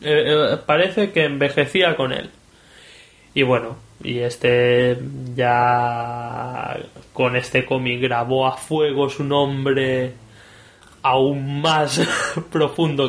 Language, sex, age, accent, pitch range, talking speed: English, male, 20-39, Spanish, 125-150 Hz, 105 wpm